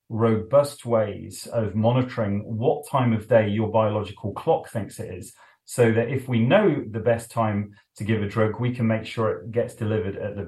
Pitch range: 100-120 Hz